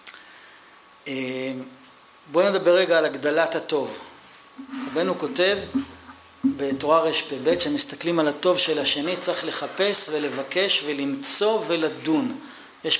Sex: male